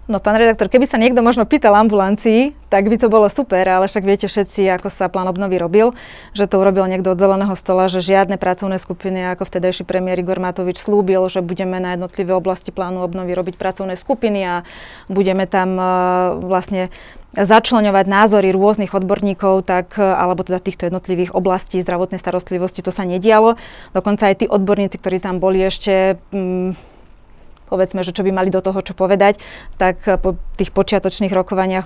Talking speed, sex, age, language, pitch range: 175 wpm, female, 20-39, Slovak, 180-200 Hz